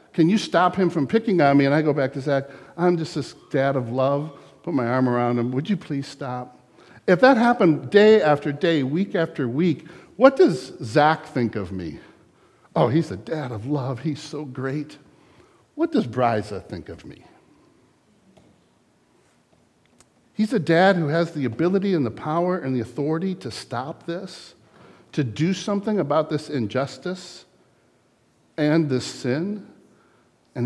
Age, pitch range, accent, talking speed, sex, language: 50-69, 130-175 Hz, American, 165 wpm, male, English